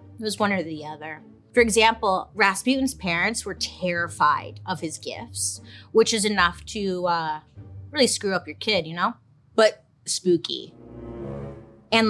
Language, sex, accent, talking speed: English, female, American, 150 wpm